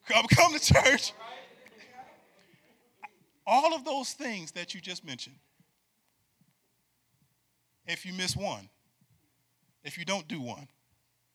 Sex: male